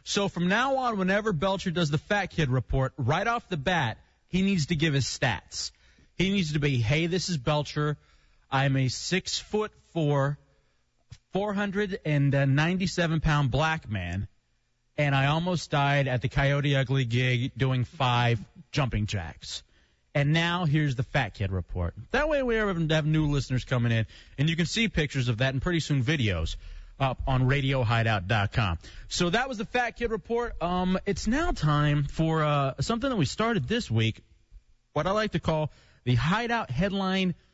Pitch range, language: 130-195 Hz, English